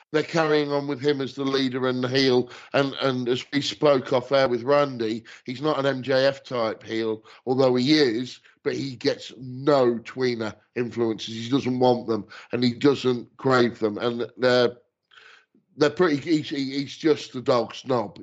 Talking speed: 175 wpm